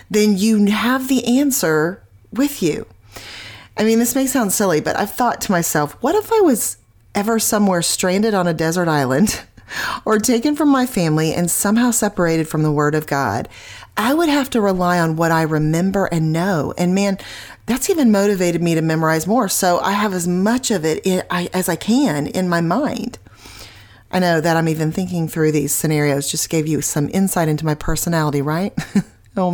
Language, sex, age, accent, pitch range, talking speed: English, female, 30-49, American, 160-210 Hz, 190 wpm